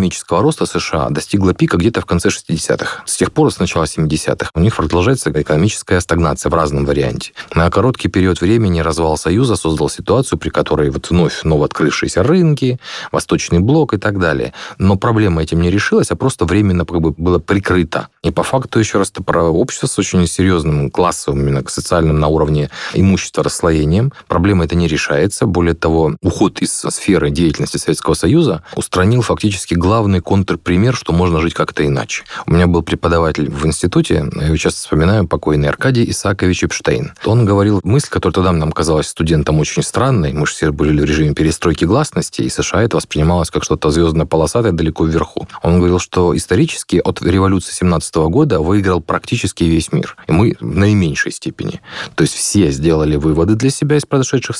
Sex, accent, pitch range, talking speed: male, native, 80-100 Hz, 175 wpm